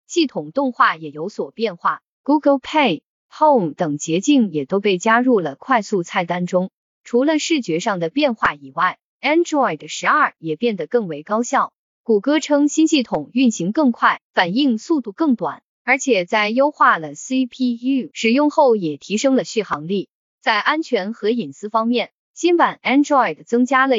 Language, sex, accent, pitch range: Chinese, female, native, 195-275 Hz